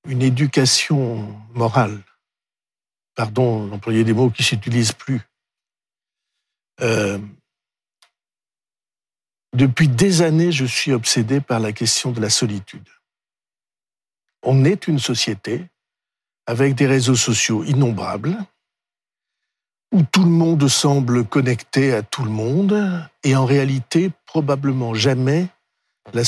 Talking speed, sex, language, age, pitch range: 110 wpm, male, French, 60-79, 120-155 Hz